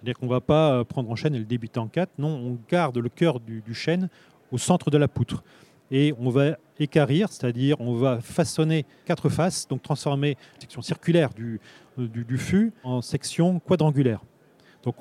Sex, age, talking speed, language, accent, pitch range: male, 30-49, 195 wpm, French, French, 125-160 Hz